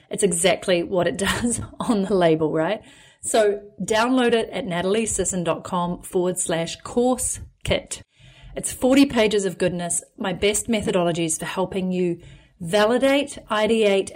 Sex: female